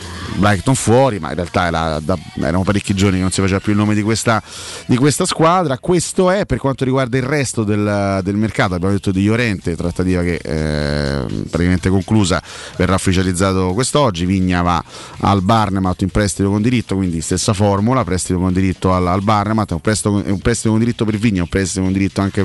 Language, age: Italian, 30-49